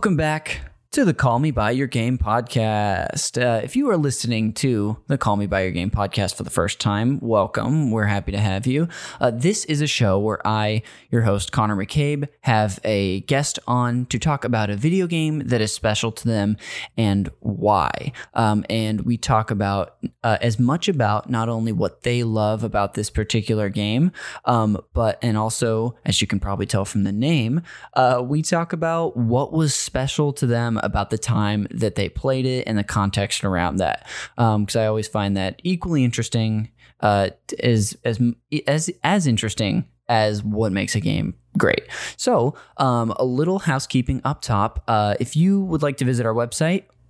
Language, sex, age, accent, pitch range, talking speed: English, male, 10-29, American, 105-135 Hz, 190 wpm